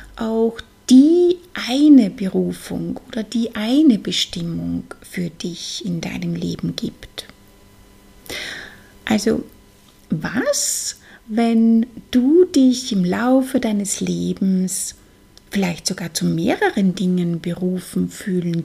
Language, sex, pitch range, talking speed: German, female, 175-250 Hz, 95 wpm